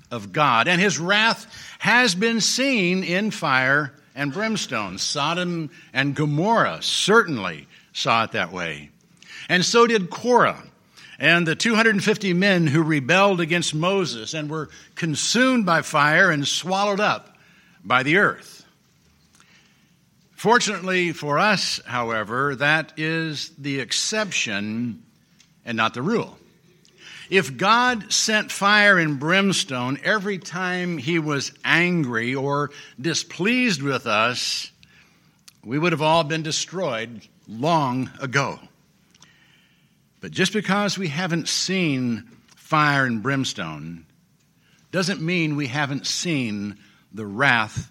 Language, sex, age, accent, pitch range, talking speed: English, male, 60-79, American, 140-195 Hz, 120 wpm